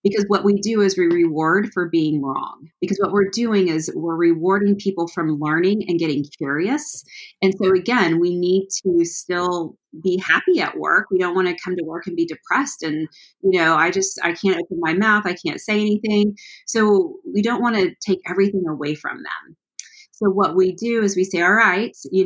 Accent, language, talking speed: American, English, 210 wpm